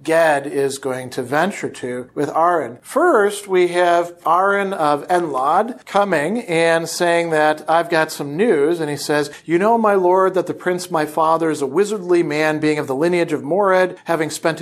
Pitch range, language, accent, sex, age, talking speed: 150-175 Hz, English, American, male, 40-59, 190 wpm